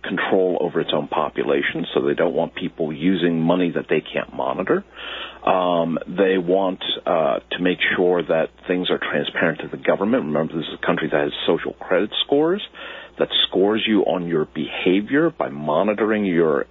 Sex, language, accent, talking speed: male, English, American, 175 wpm